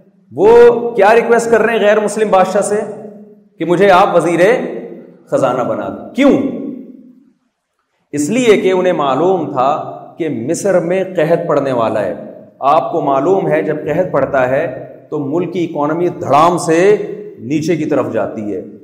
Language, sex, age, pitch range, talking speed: Urdu, male, 40-59, 170-225 Hz, 160 wpm